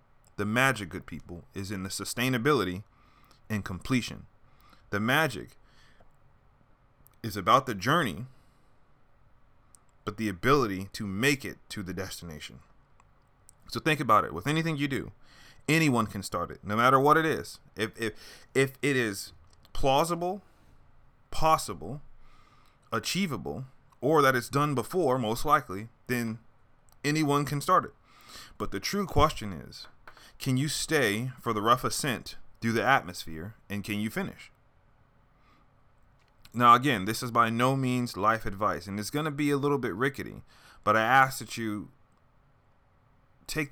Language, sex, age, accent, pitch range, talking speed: English, male, 30-49, American, 105-135 Hz, 145 wpm